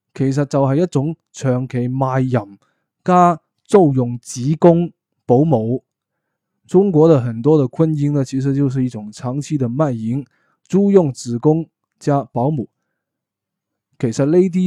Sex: male